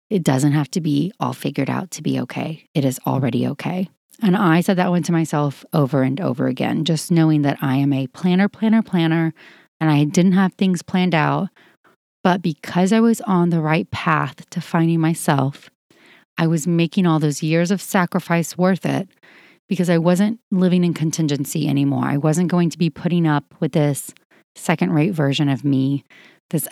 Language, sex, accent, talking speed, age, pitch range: English, female, American, 190 wpm, 30-49, 145-180 Hz